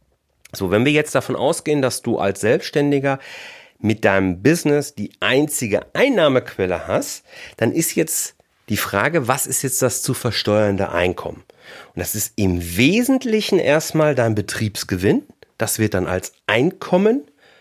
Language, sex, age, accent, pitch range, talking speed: German, male, 40-59, German, 95-140 Hz, 145 wpm